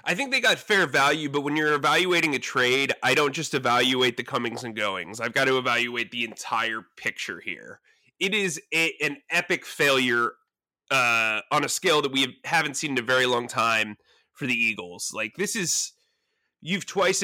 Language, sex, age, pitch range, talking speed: English, male, 30-49, 130-170 Hz, 195 wpm